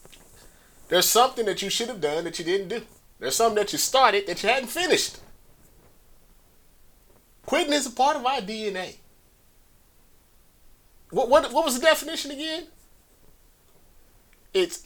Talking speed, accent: 140 wpm, American